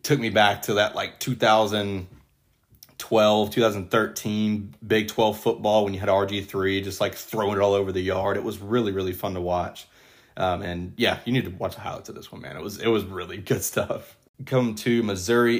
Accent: American